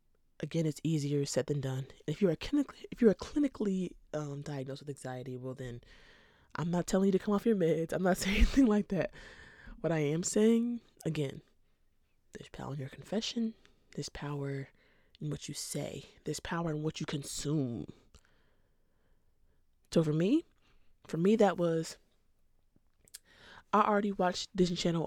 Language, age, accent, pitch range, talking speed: English, 20-39, American, 145-185 Hz, 165 wpm